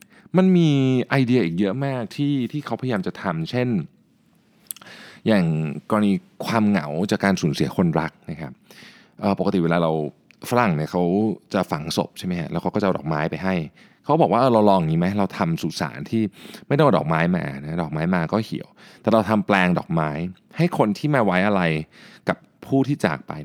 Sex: male